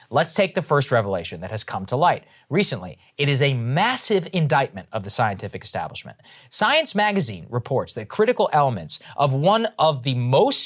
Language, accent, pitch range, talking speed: English, American, 130-180 Hz, 175 wpm